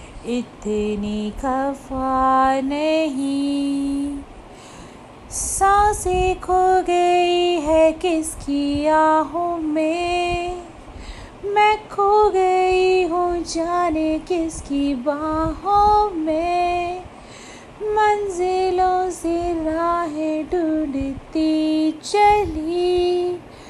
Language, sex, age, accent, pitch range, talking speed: Hindi, female, 20-39, native, 310-360 Hz, 60 wpm